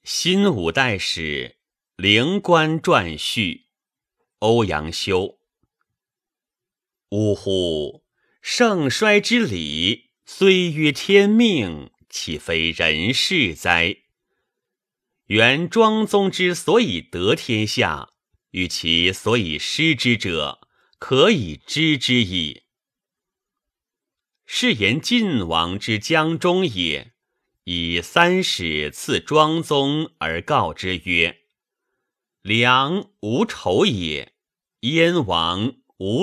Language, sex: Chinese, male